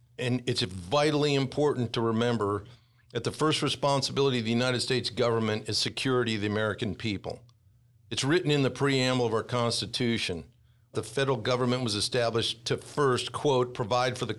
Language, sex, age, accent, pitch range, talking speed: English, male, 50-69, American, 115-130 Hz, 165 wpm